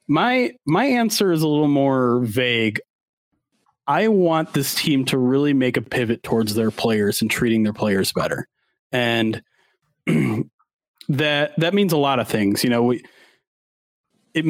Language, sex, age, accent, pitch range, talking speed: English, male, 30-49, American, 125-150 Hz, 150 wpm